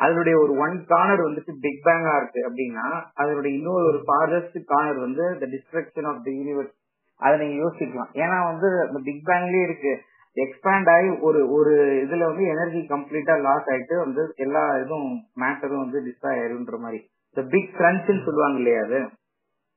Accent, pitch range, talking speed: native, 140-170 Hz, 105 wpm